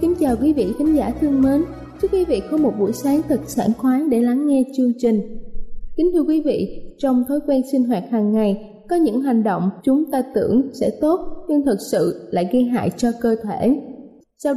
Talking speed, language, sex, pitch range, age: 220 wpm, Vietnamese, female, 230-290 Hz, 20-39